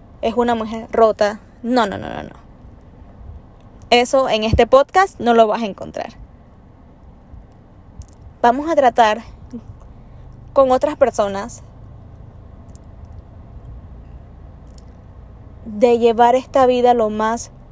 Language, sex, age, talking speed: Spanish, female, 10-29, 100 wpm